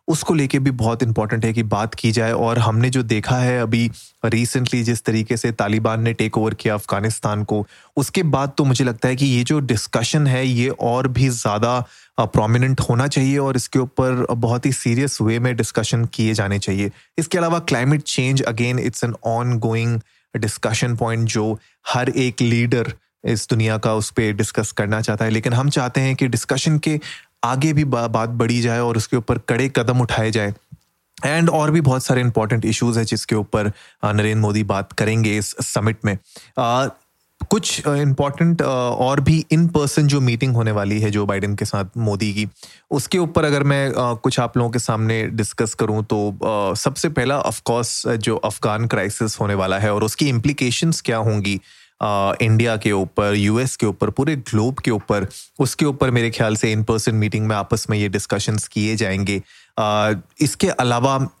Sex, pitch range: male, 110-130 Hz